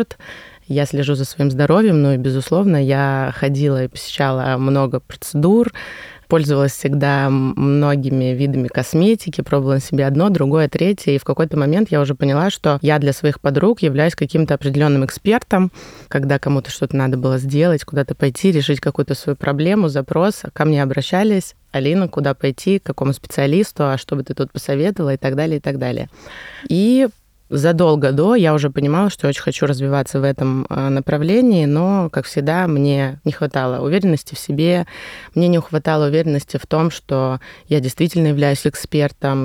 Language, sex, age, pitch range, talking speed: Russian, female, 20-39, 140-170 Hz, 165 wpm